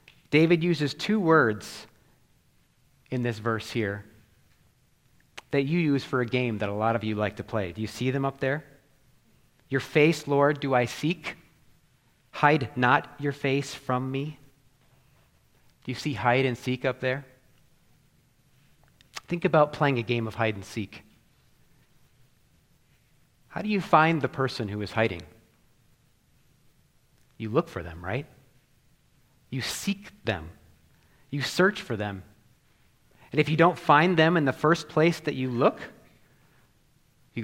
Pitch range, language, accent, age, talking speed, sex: 115-150 Hz, English, American, 30-49, 145 wpm, male